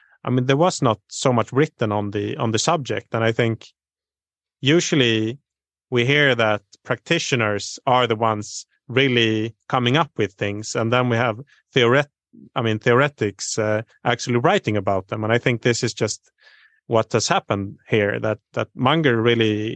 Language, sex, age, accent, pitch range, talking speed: English, male, 30-49, Norwegian, 110-125 Hz, 170 wpm